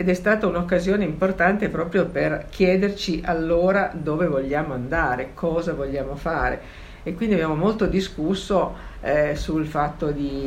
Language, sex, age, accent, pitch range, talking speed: Italian, female, 50-69, native, 150-190 Hz, 140 wpm